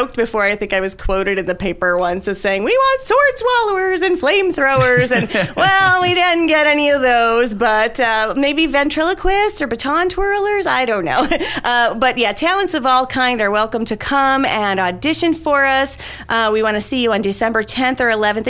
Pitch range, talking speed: 185-265 Hz, 200 wpm